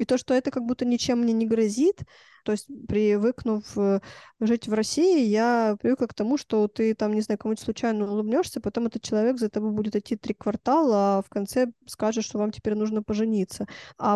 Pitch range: 200-235 Hz